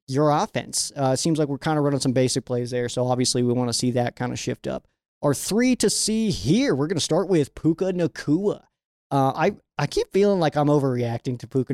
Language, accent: English, American